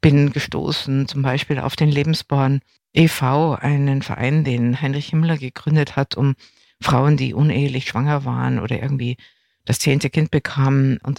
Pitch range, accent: 130-150 Hz, German